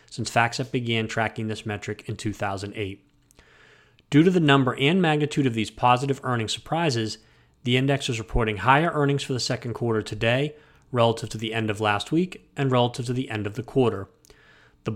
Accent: American